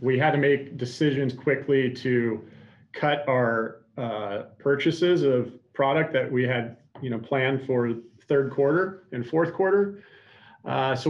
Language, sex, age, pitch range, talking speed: English, male, 40-59, 115-140 Hz, 145 wpm